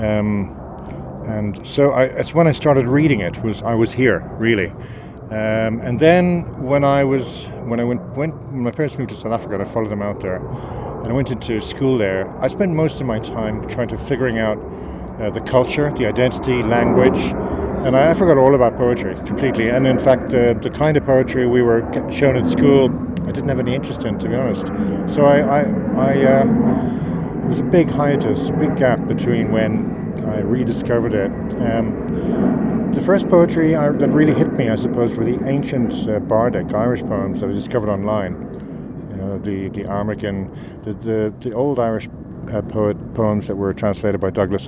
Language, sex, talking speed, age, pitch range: English, male, 195 wpm, 50-69, 105-135 Hz